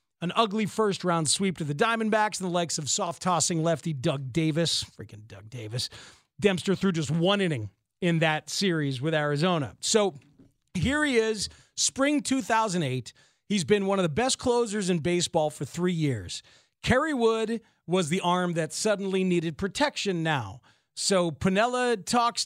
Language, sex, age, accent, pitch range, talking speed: English, male, 40-59, American, 155-205 Hz, 160 wpm